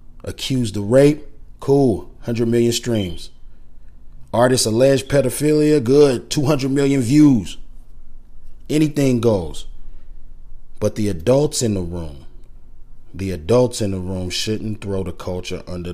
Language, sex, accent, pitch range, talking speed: English, male, American, 95-130 Hz, 120 wpm